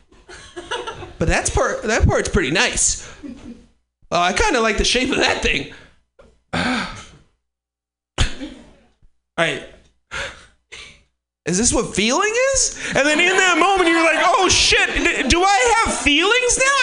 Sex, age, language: male, 30-49, English